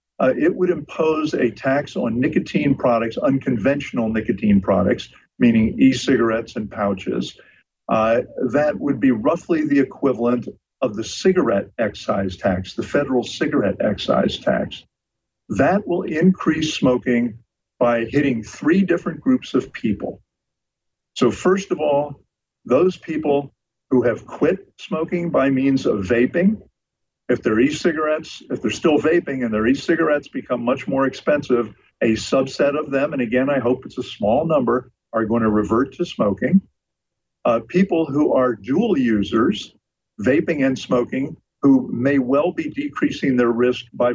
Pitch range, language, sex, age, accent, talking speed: 120-160 Hz, English, male, 50-69, American, 145 wpm